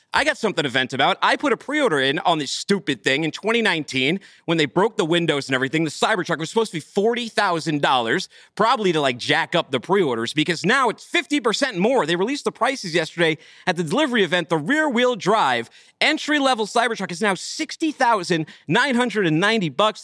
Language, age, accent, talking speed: English, 40-59, American, 180 wpm